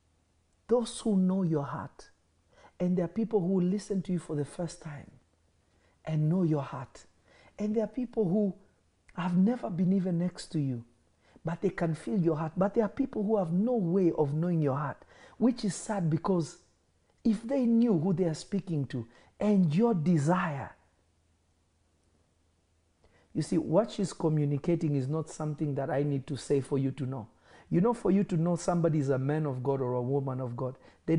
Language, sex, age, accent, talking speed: English, male, 50-69, South African, 195 wpm